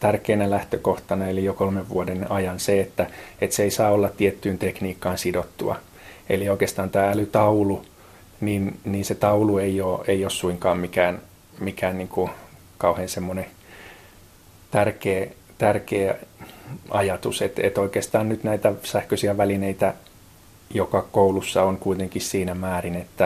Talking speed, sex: 135 wpm, male